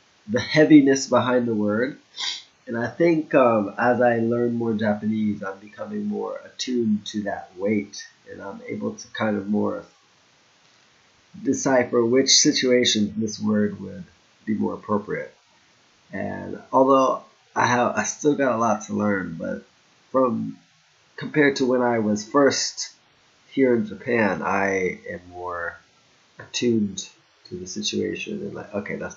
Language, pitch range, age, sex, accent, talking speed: English, 105-130 Hz, 20-39, male, American, 140 wpm